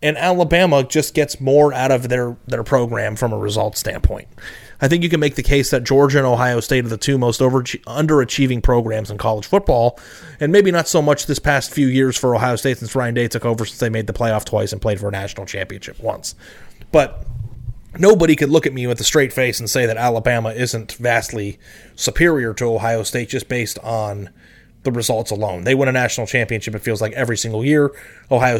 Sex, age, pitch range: male, 30-49, 115-145 Hz